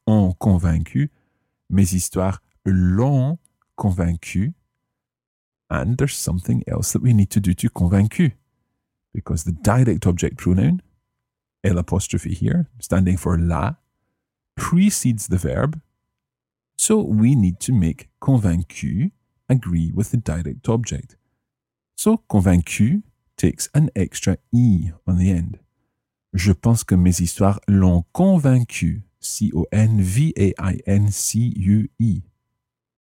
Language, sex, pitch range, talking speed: English, male, 90-125 Hz, 105 wpm